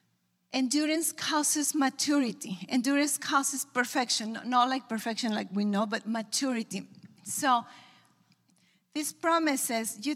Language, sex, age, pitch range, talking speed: English, female, 40-59, 230-285 Hz, 105 wpm